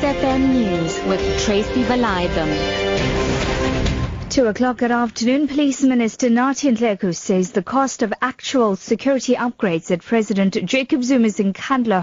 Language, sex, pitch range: English, female, 205-265 Hz